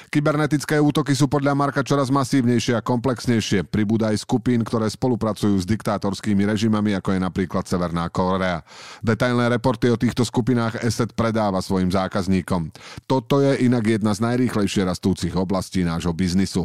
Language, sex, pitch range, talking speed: Slovak, male, 100-130 Hz, 150 wpm